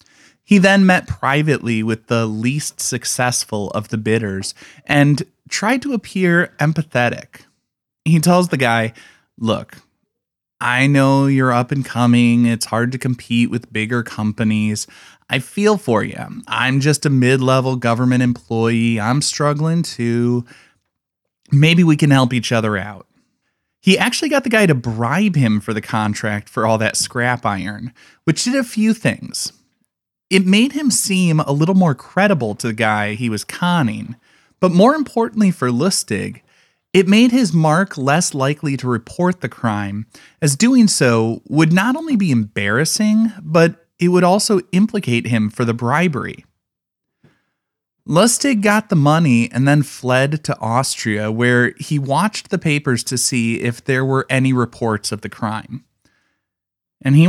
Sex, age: male, 20-39